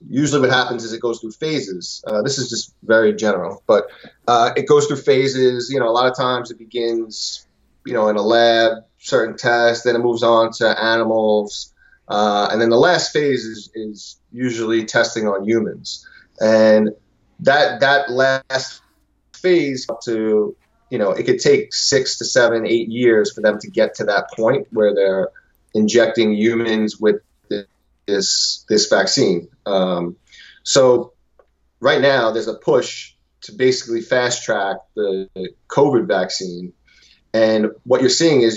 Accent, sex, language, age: American, male, English, 30-49